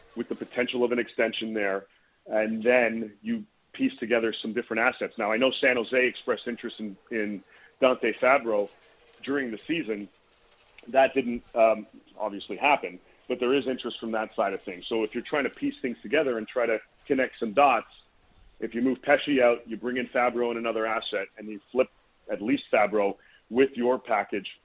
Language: English